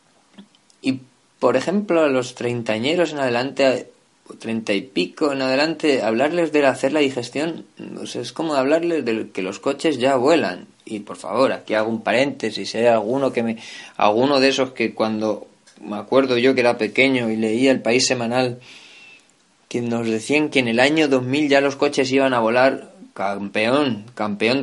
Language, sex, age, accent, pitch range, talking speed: Spanish, male, 20-39, Spanish, 110-135 Hz, 170 wpm